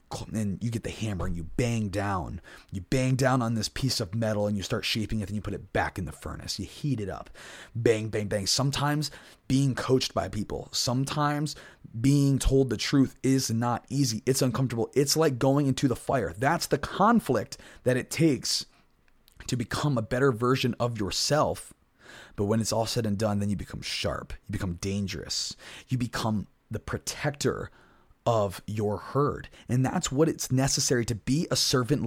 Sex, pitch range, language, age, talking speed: male, 110-160 Hz, English, 30-49, 190 wpm